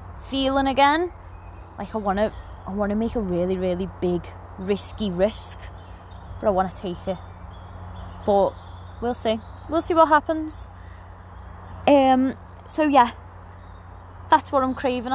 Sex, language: female, English